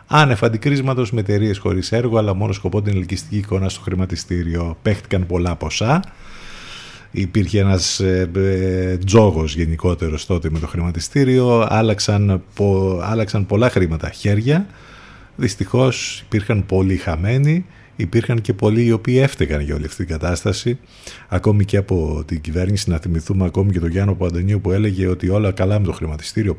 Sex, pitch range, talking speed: male, 90-110 Hz, 150 wpm